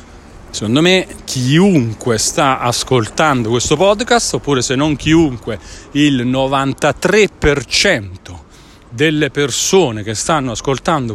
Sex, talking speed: male, 95 wpm